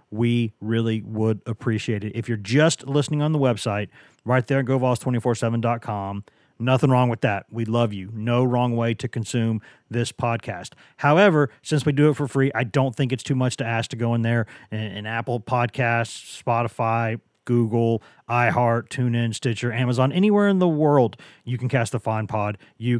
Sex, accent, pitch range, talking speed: male, American, 115-150 Hz, 185 wpm